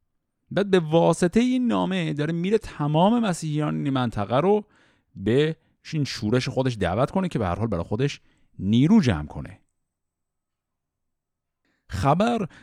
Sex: male